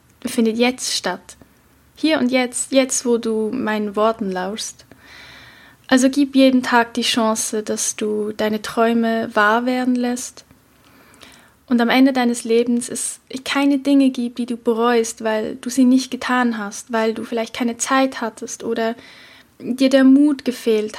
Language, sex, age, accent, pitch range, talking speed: German, female, 10-29, German, 225-255 Hz, 155 wpm